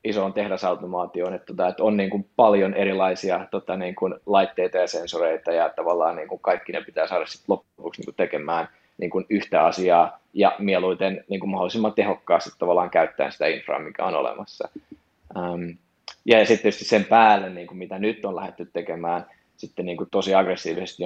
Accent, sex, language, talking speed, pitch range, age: native, male, Finnish, 120 wpm, 95-100 Hz, 20-39